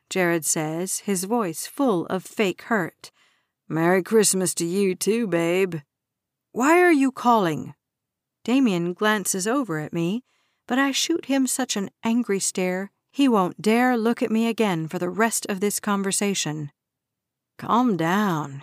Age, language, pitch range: 50-69, English, 175-225 Hz